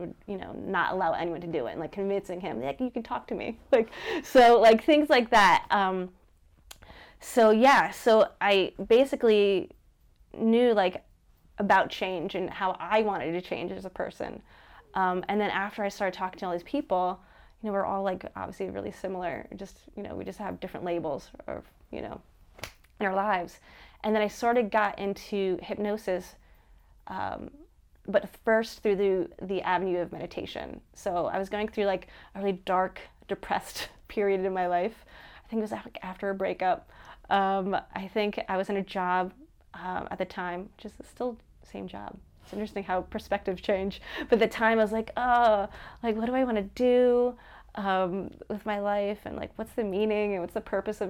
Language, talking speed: English, 195 wpm